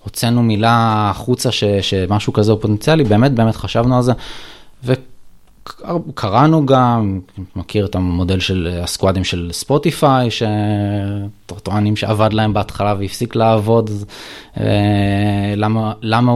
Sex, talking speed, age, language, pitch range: male, 110 wpm, 20-39, Hebrew, 95-115 Hz